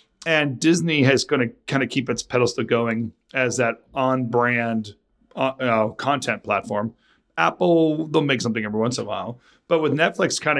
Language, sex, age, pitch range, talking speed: English, male, 40-59, 110-135 Hz, 175 wpm